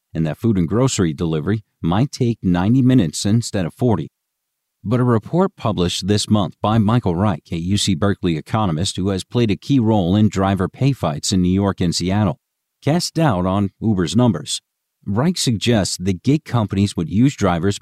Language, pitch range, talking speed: English, 90-115 Hz, 180 wpm